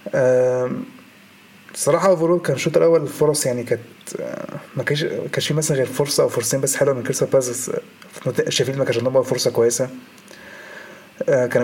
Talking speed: 145 wpm